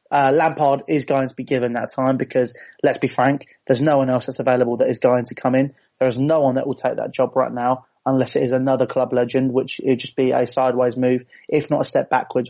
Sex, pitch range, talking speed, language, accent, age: male, 125-140 Hz, 260 wpm, English, British, 20-39